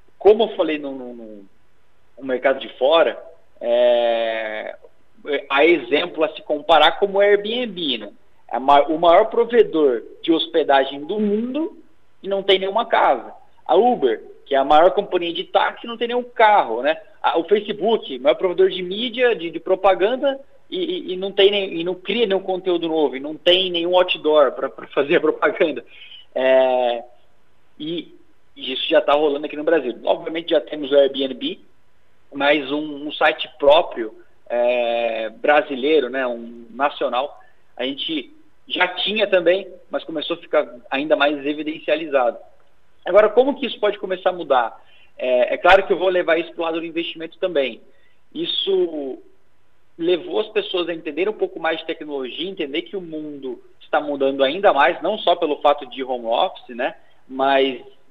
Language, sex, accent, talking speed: Portuguese, male, Brazilian, 170 wpm